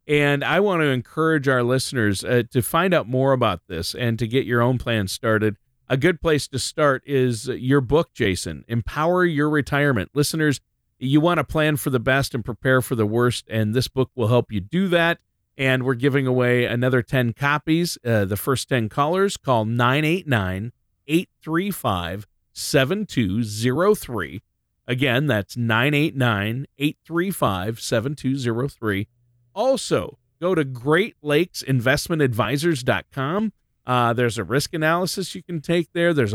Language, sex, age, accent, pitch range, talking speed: English, male, 40-59, American, 115-155 Hz, 140 wpm